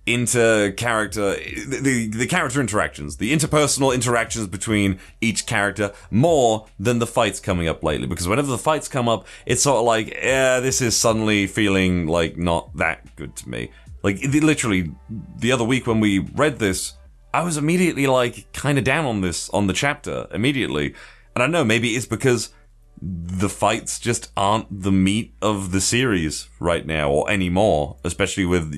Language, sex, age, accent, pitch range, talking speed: English, male, 30-49, British, 85-115 Hz, 175 wpm